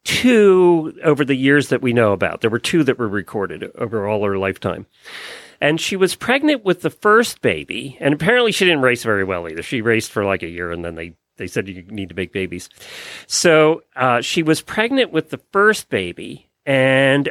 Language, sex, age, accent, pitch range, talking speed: English, male, 40-59, American, 115-165 Hz, 210 wpm